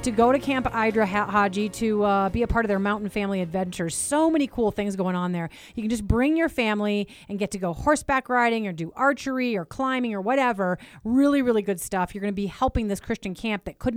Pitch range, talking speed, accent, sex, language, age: 190-245 Hz, 240 wpm, American, female, English, 30-49